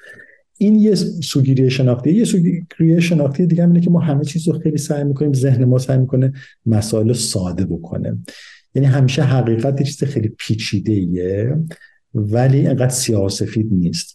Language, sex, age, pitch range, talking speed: Persian, male, 50-69, 100-135 Hz, 145 wpm